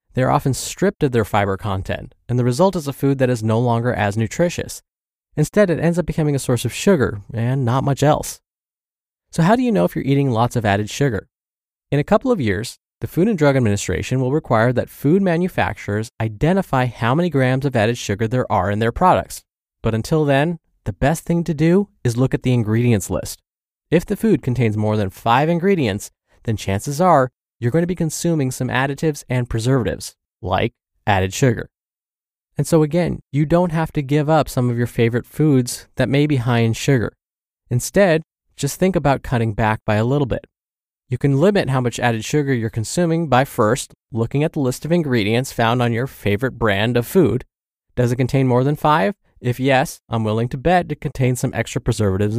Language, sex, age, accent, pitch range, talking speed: English, male, 20-39, American, 115-150 Hz, 205 wpm